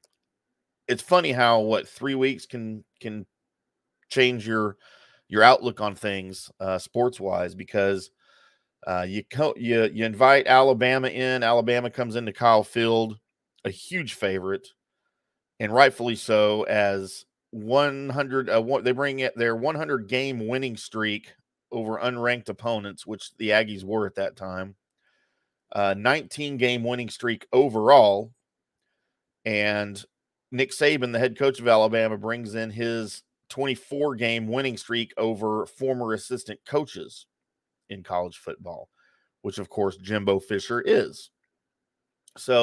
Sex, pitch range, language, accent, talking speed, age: male, 100-130 Hz, English, American, 130 wpm, 40-59